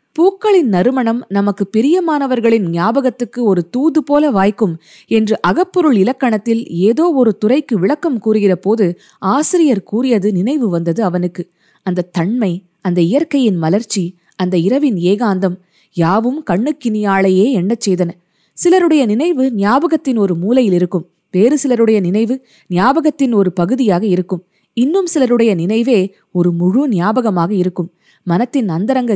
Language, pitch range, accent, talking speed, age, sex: Tamil, 185-255 Hz, native, 115 wpm, 20-39, female